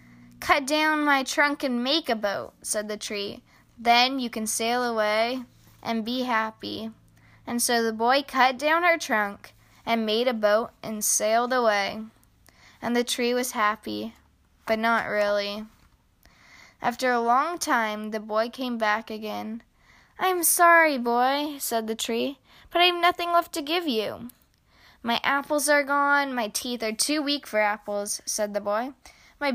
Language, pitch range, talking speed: English, 220-275 Hz, 160 wpm